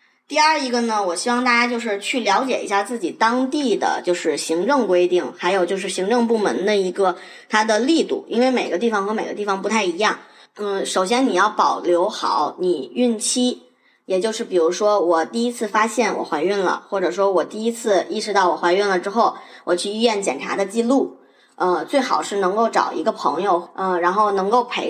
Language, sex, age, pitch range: Chinese, male, 20-39, 185-250 Hz